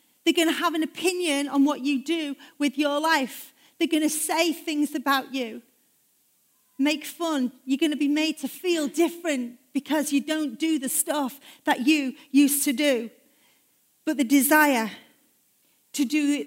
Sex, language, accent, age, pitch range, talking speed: female, English, British, 40-59, 260-320 Hz, 170 wpm